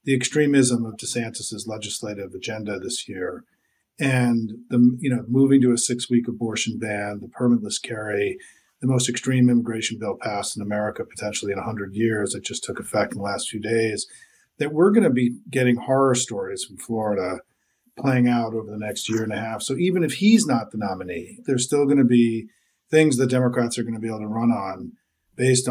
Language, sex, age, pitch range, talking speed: English, male, 40-59, 120-140 Hz, 200 wpm